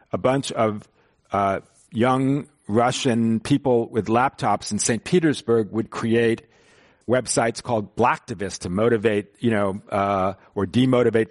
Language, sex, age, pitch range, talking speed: English, male, 50-69, 110-140 Hz, 125 wpm